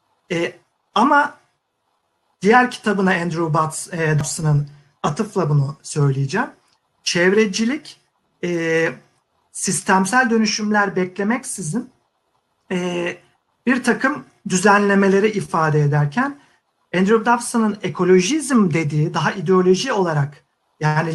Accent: native